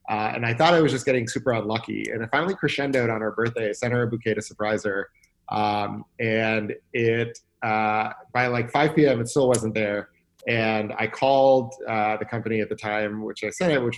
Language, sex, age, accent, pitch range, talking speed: English, male, 30-49, American, 110-135 Hz, 215 wpm